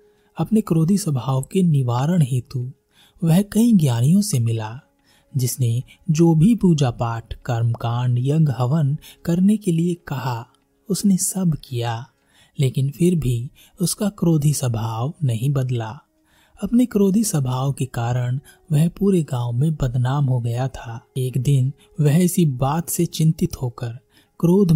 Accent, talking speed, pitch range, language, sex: native, 135 wpm, 125-170 Hz, Hindi, male